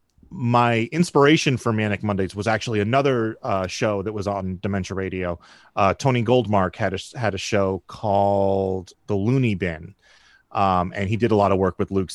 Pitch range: 100-120 Hz